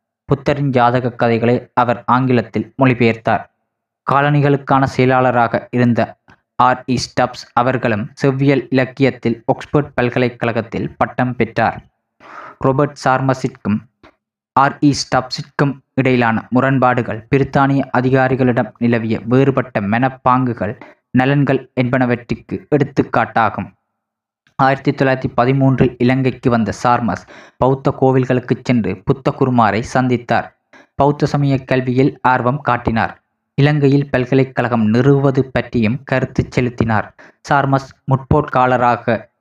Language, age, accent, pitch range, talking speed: Tamil, 20-39, native, 120-135 Hz, 85 wpm